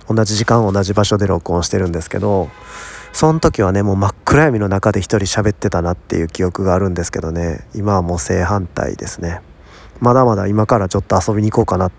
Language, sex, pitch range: Japanese, male, 90-115 Hz